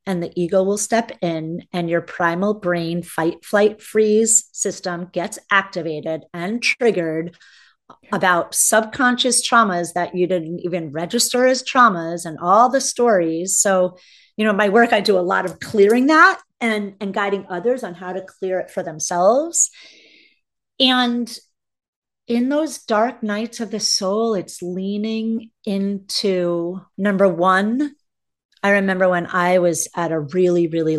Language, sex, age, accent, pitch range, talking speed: English, female, 40-59, American, 175-220 Hz, 150 wpm